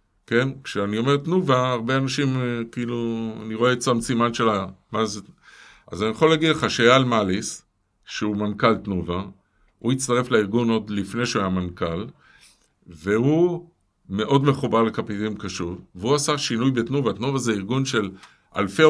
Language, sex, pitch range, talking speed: Hebrew, male, 100-130 Hz, 150 wpm